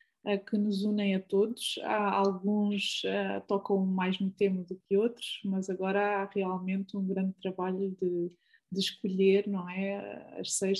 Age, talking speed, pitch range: 20-39, 140 wpm, 190-210 Hz